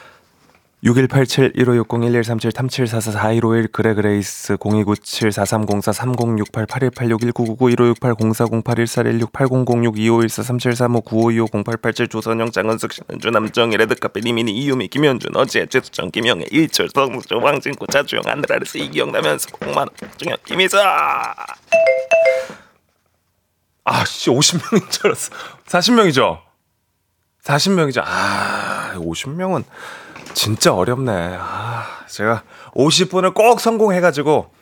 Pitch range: 110-170 Hz